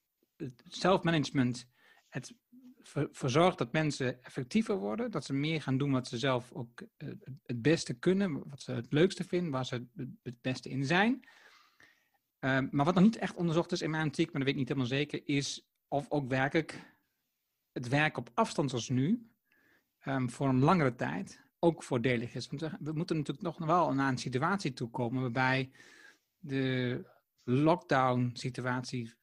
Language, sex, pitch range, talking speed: Dutch, male, 130-165 Hz, 165 wpm